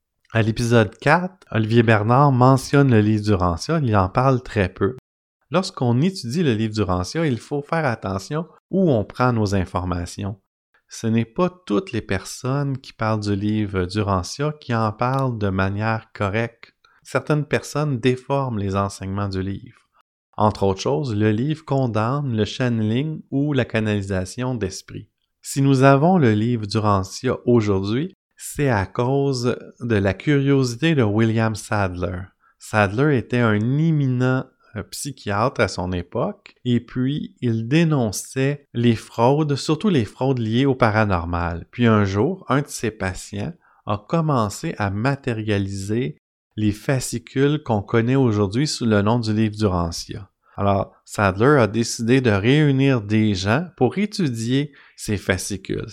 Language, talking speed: French, 145 wpm